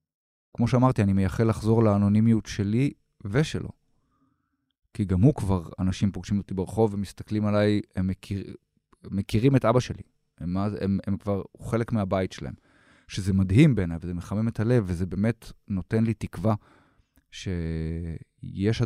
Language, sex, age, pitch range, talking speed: Hebrew, male, 30-49, 95-115 Hz, 145 wpm